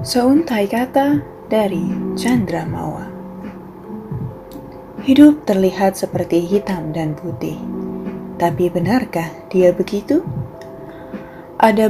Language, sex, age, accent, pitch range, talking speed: Indonesian, female, 20-39, native, 170-215 Hz, 75 wpm